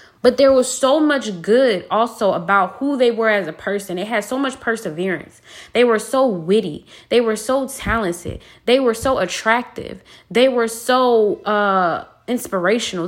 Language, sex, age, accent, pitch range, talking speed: English, female, 20-39, American, 190-240 Hz, 165 wpm